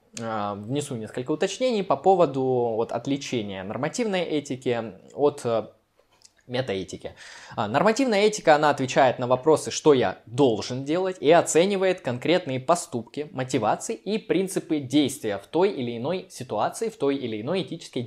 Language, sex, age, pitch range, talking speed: Russian, male, 20-39, 120-170 Hz, 125 wpm